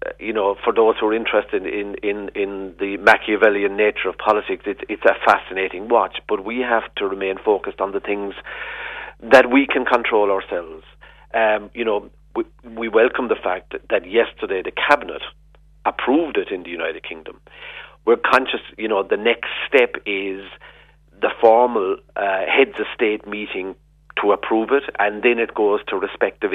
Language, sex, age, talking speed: English, male, 50-69, 175 wpm